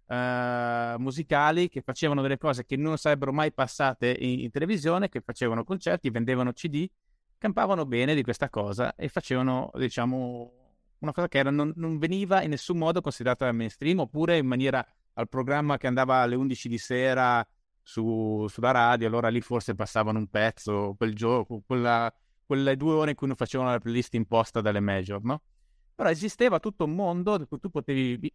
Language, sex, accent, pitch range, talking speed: Italian, male, native, 120-155 Hz, 175 wpm